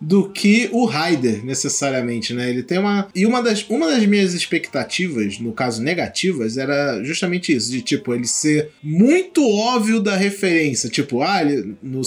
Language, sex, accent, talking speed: Portuguese, male, Brazilian, 160 wpm